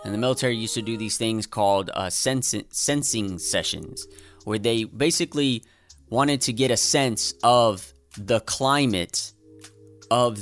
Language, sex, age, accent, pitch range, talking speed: English, male, 20-39, American, 105-135 Hz, 140 wpm